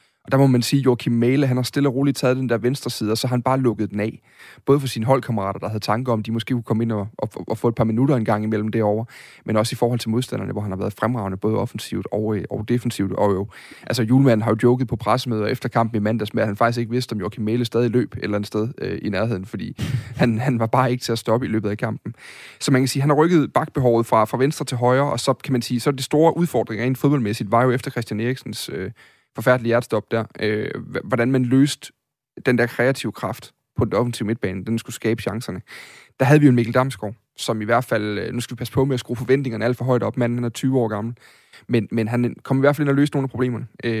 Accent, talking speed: native, 270 wpm